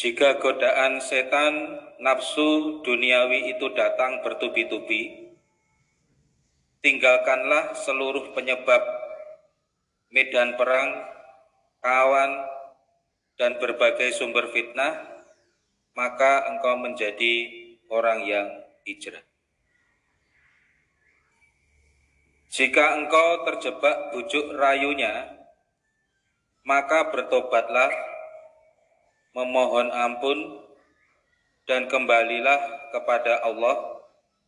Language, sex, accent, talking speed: Indonesian, male, native, 65 wpm